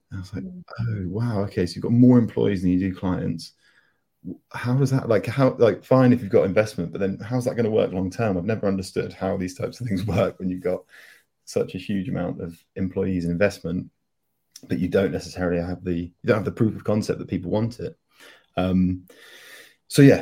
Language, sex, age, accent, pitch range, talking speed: English, male, 30-49, British, 90-105 Hz, 225 wpm